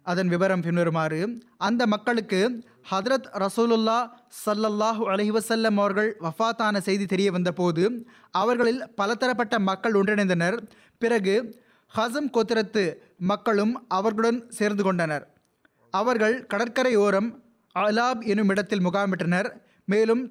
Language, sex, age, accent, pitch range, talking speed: Tamil, male, 20-39, native, 190-230 Hz, 100 wpm